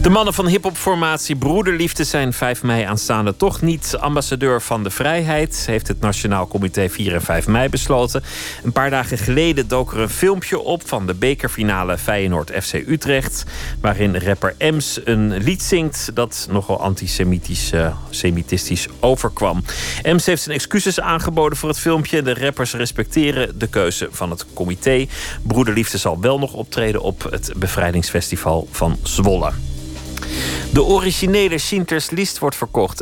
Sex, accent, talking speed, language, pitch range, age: male, Dutch, 150 wpm, Dutch, 100-140 Hz, 40-59